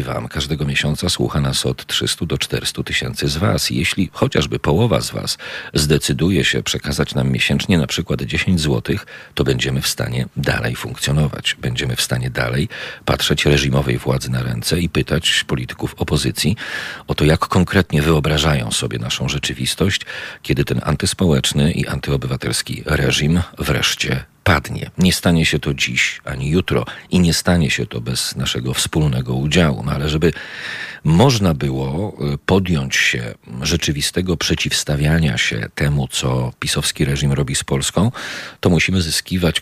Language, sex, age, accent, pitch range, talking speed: Polish, male, 40-59, native, 70-85 Hz, 150 wpm